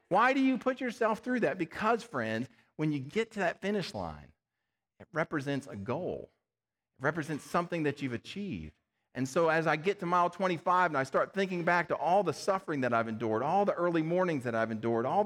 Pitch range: 125-190 Hz